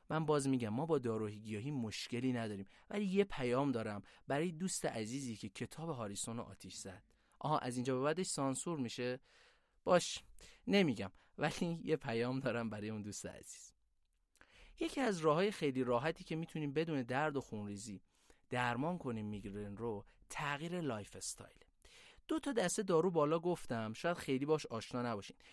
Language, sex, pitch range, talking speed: Persian, male, 115-160 Hz, 155 wpm